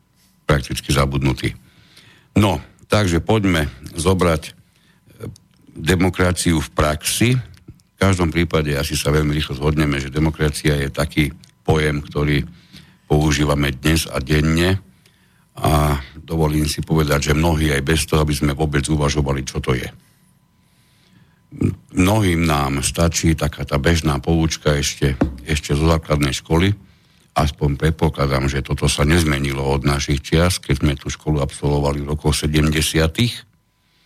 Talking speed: 125 wpm